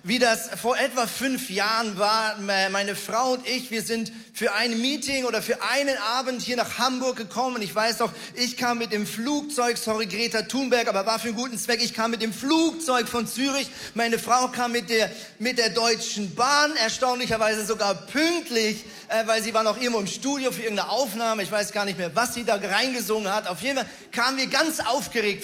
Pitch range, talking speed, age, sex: 205-245 Hz, 205 wpm, 40-59, male